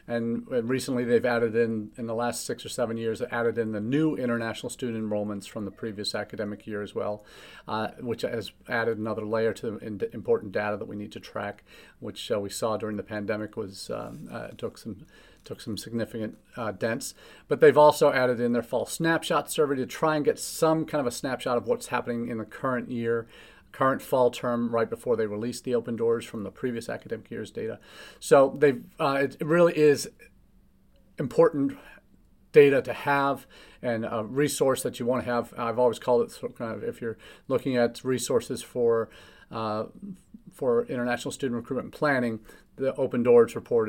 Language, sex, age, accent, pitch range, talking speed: English, male, 40-59, American, 110-130 Hz, 190 wpm